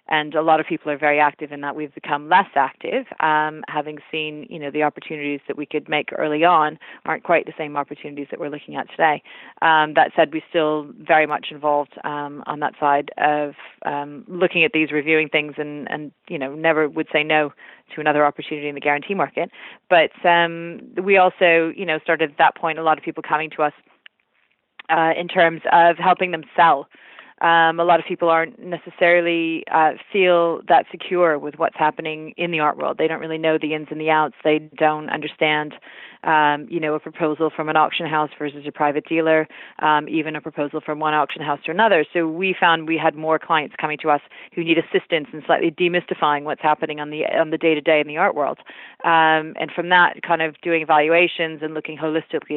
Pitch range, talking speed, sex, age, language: 150-165 Hz, 210 wpm, female, 30-49, English